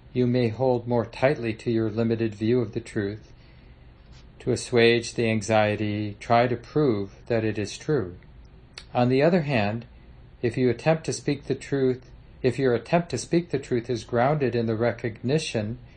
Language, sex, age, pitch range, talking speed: English, male, 50-69, 110-135 Hz, 175 wpm